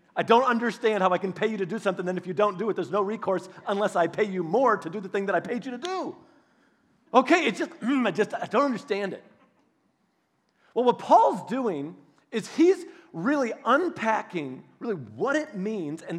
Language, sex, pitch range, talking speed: English, male, 175-240 Hz, 210 wpm